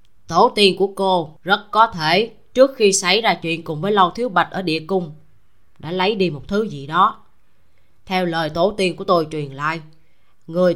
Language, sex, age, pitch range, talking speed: Vietnamese, female, 20-39, 155-235 Hz, 200 wpm